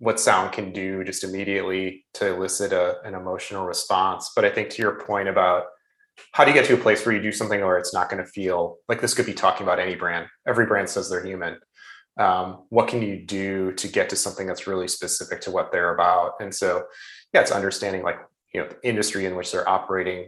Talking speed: 230 wpm